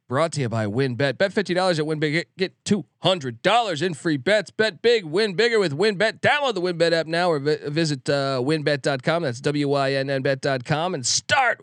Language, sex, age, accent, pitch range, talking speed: English, male, 40-59, American, 130-170 Hz, 175 wpm